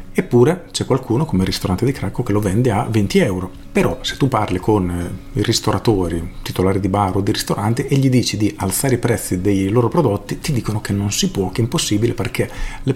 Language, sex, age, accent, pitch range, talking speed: Italian, male, 40-59, native, 100-125 Hz, 220 wpm